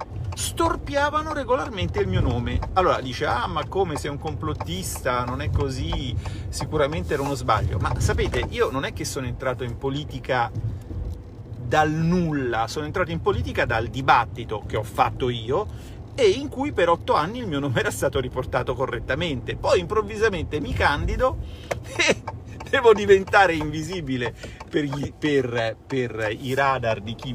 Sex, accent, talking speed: male, native, 155 wpm